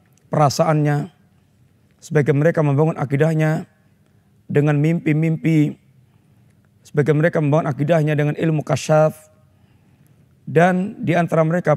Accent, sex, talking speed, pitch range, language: native, male, 85 wpm, 150-170 Hz, Indonesian